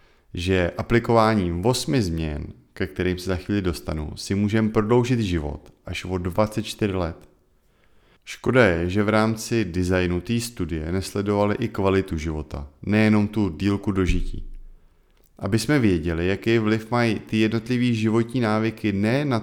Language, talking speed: Czech, 140 wpm